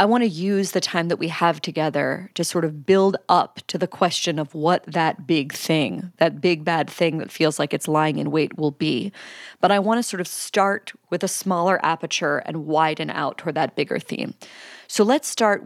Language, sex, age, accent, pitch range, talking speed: English, female, 30-49, American, 160-190 Hz, 220 wpm